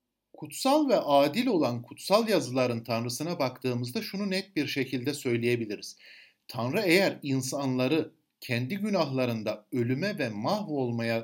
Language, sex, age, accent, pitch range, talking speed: Turkish, male, 60-79, native, 130-210 Hz, 110 wpm